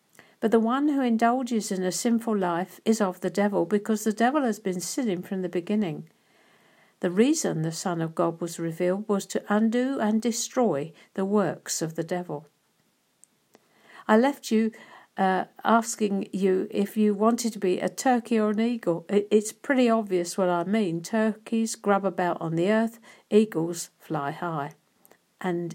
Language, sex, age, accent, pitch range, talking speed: English, female, 60-79, British, 180-225 Hz, 170 wpm